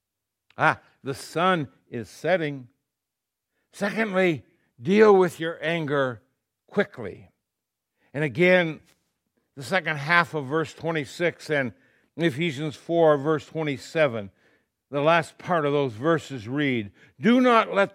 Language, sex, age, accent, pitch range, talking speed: English, male, 60-79, American, 140-195 Hz, 115 wpm